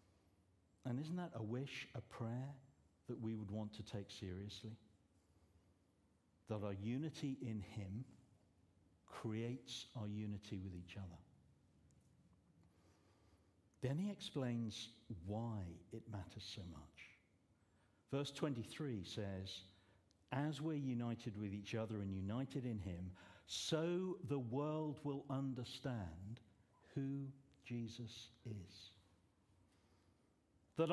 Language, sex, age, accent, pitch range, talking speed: English, male, 60-79, British, 95-135 Hz, 105 wpm